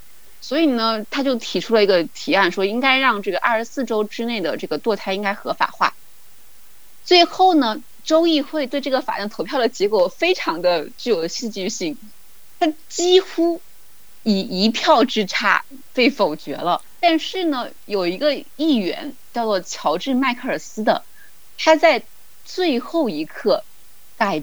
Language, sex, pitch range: Chinese, female, 200-295 Hz